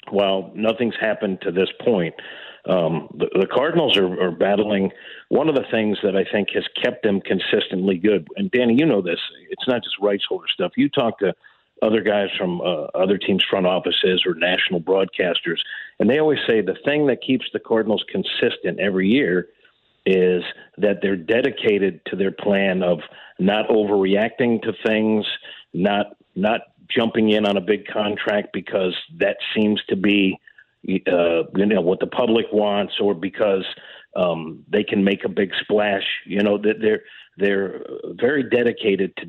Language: English